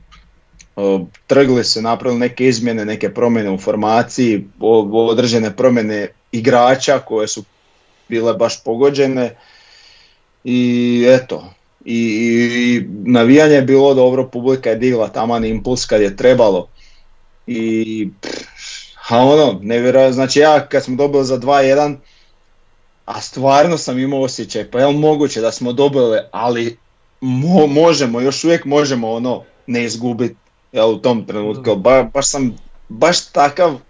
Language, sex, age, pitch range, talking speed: Croatian, male, 40-59, 110-135 Hz, 135 wpm